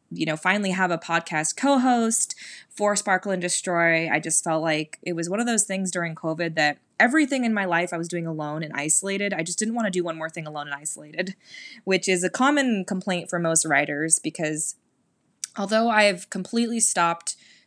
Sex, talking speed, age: female, 205 wpm, 20-39